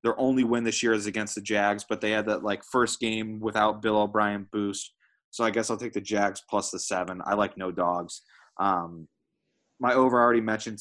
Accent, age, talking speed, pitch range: American, 20-39, 220 wpm, 100-115 Hz